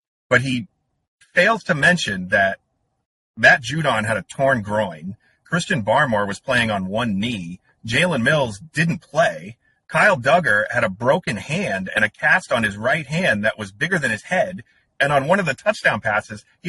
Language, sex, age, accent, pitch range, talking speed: English, male, 30-49, American, 110-170 Hz, 180 wpm